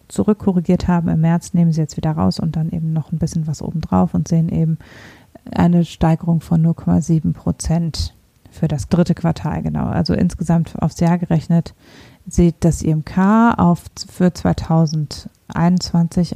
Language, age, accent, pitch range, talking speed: German, 30-49, German, 160-180 Hz, 155 wpm